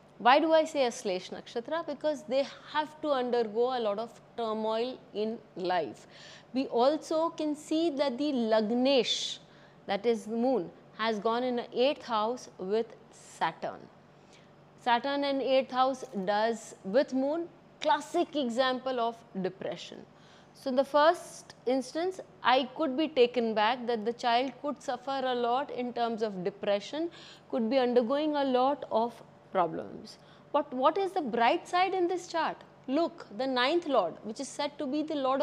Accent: Indian